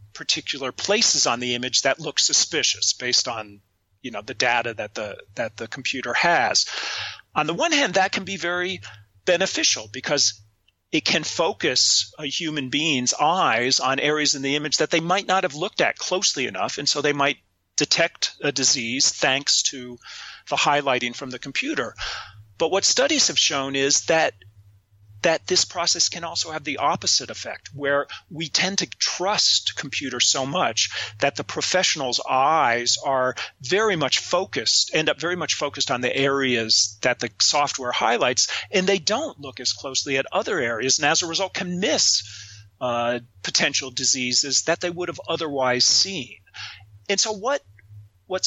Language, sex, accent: English, male, American